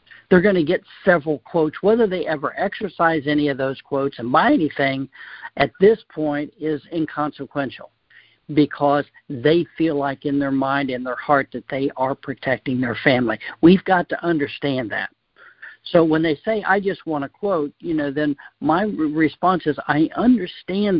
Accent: American